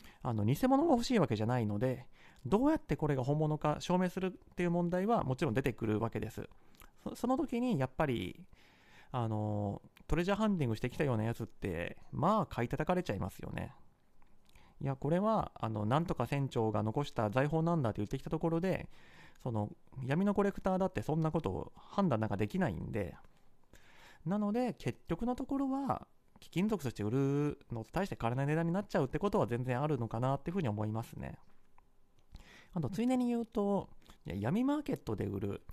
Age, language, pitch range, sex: 30-49, Japanese, 115-195 Hz, male